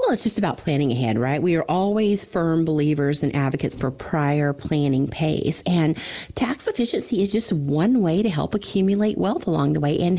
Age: 30-49